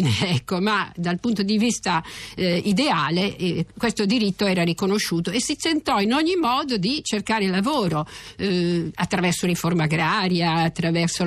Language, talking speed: Italian, 145 wpm